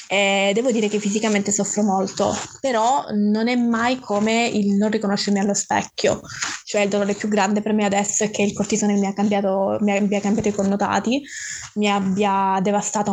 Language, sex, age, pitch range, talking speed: Italian, female, 20-39, 200-210 Hz, 175 wpm